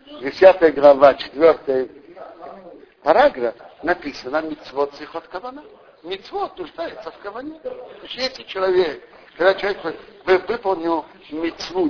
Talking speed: 85 wpm